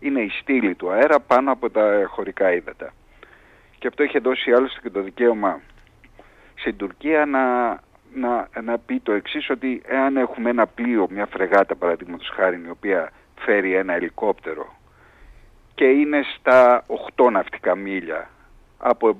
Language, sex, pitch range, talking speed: Greek, male, 105-150 Hz, 145 wpm